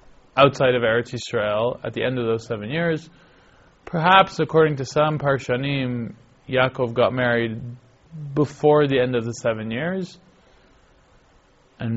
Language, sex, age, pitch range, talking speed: English, male, 20-39, 120-145 Hz, 135 wpm